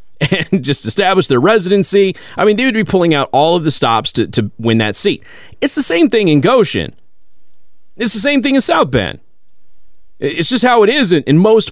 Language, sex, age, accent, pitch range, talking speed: English, male, 30-49, American, 130-215 Hz, 215 wpm